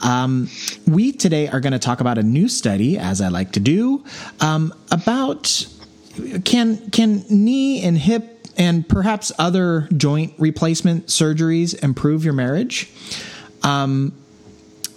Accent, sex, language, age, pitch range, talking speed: American, male, English, 30-49, 120-160 Hz, 130 wpm